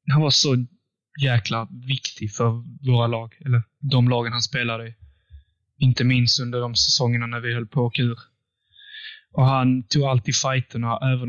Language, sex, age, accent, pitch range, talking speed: English, male, 10-29, Swedish, 120-135 Hz, 165 wpm